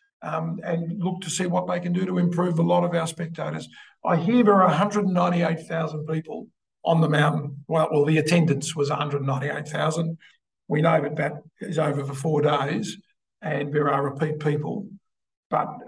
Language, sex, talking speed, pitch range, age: English, male, 175 wpm, 150-170 Hz, 50-69